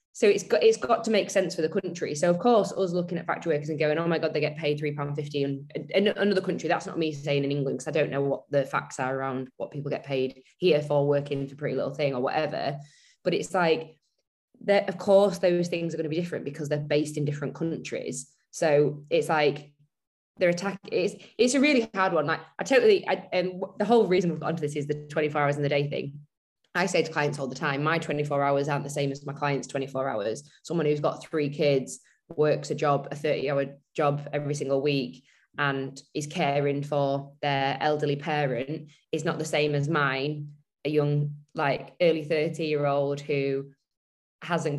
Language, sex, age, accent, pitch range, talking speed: English, female, 20-39, British, 140-160 Hz, 220 wpm